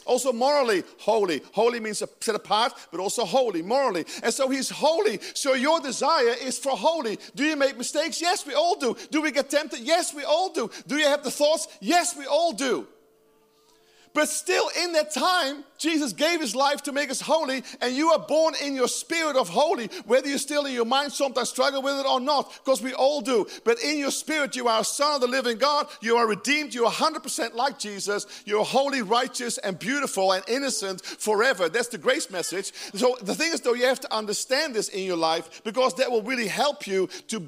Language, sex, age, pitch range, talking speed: English, male, 40-59, 240-310 Hz, 220 wpm